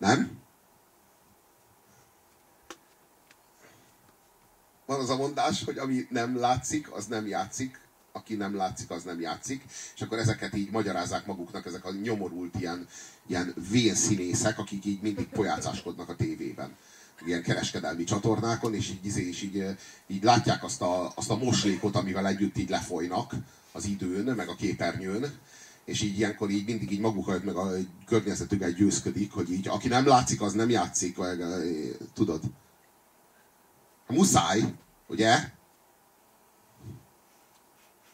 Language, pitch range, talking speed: Hungarian, 95-110 Hz, 125 wpm